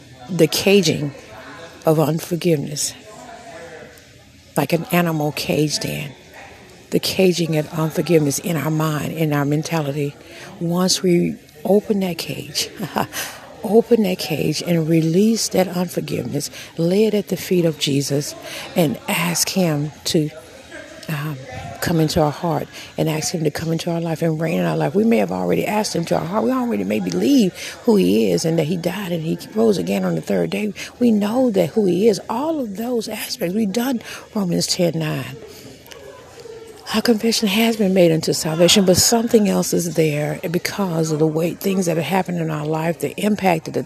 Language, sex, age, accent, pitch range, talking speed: English, female, 50-69, American, 155-190 Hz, 180 wpm